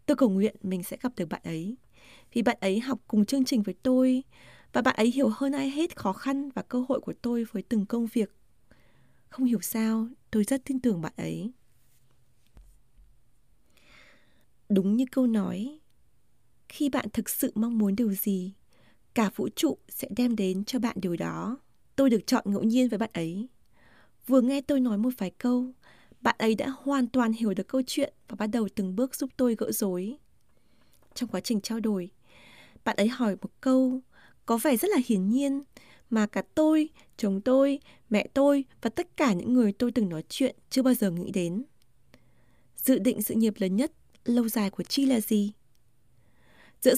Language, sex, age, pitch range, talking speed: Vietnamese, female, 20-39, 205-270 Hz, 190 wpm